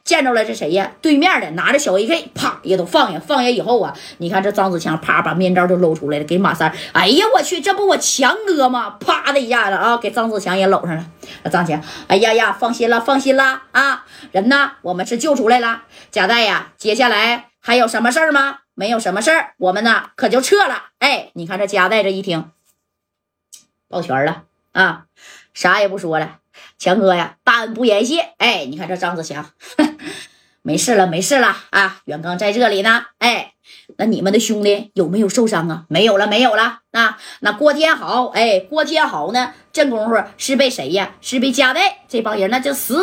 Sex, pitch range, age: female, 185-250 Hz, 20-39